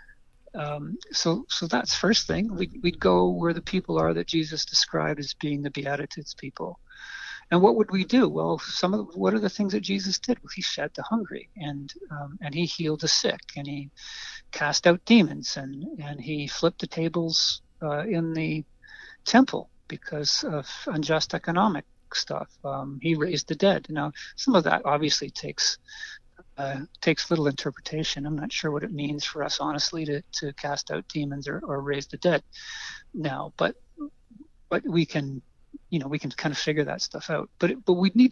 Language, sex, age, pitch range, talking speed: English, male, 60-79, 145-205 Hz, 190 wpm